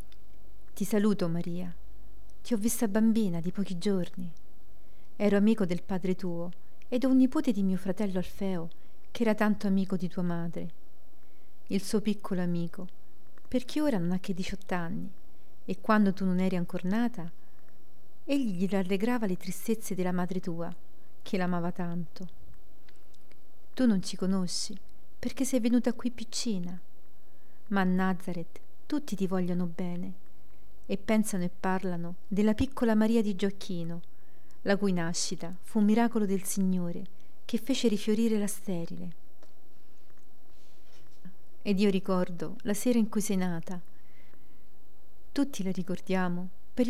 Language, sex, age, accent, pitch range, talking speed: Italian, female, 40-59, native, 180-220 Hz, 140 wpm